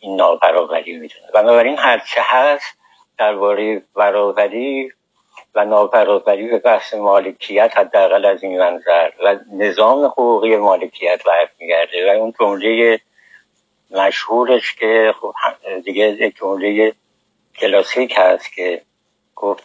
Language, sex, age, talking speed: Persian, male, 60-79, 110 wpm